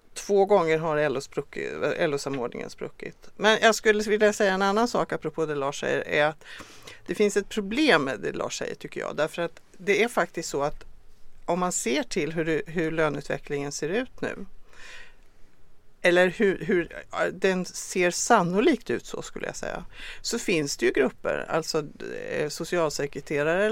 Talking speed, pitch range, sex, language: 160 wpm, 160-210 Hz, female, English